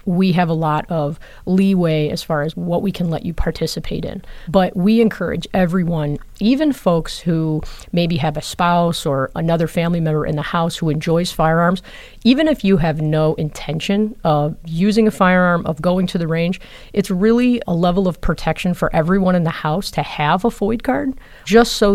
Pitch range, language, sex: 155-185 Hz, English, female